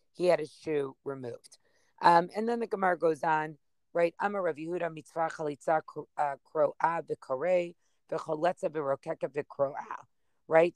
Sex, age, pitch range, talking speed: female, 40-59, 155-190 Hz, 130 wpm